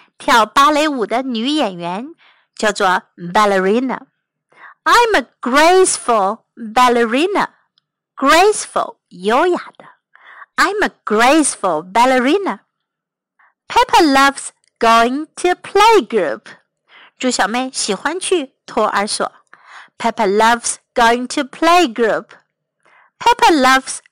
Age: 50-69